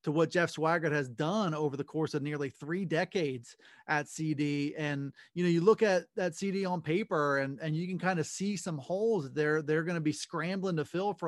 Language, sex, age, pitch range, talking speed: English, male, 30-49, 155-190 Hz, 230 wpm